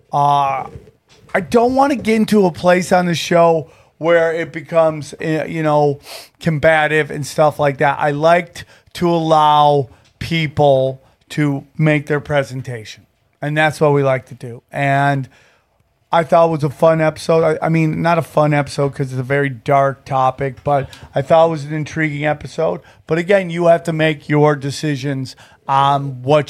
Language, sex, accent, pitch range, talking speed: English, male, American, 140-160 Hz, 175 wpm